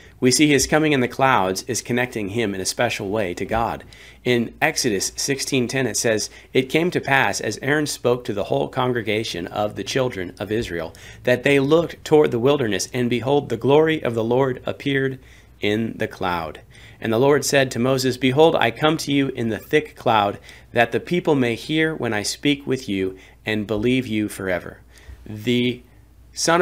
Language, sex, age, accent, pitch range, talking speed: English, male, 40-59, American, 105-135 Hz, 190 wpm